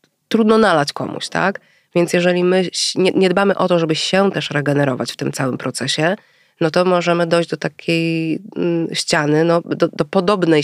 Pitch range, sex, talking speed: 145-170 Hz, female, 165 wpm